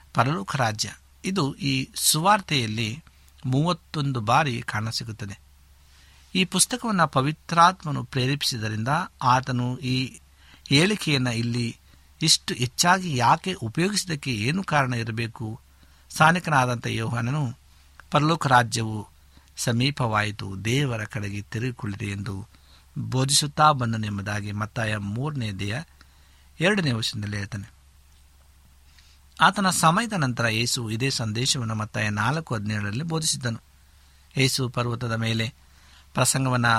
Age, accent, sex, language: 60-79, native, male, Kannada